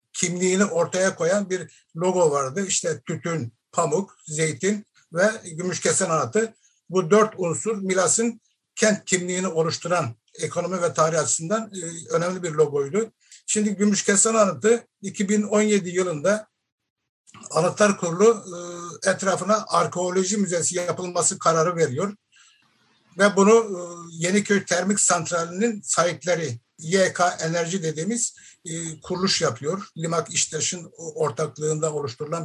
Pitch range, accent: 165-205 Hz, native